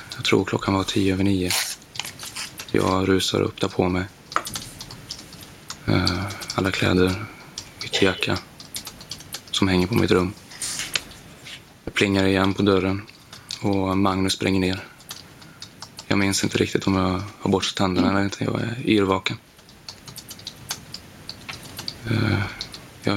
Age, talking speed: 20-39, 120 wpm